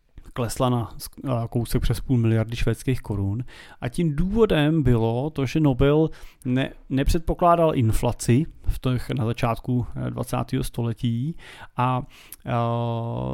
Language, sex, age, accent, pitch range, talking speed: Czech, male, 30-49, native, 115-135 Hz, 115 wpm